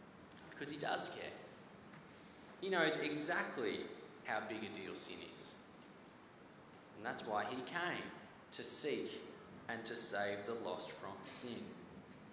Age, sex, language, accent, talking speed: 30-49, male, English, Australian, 130 wpm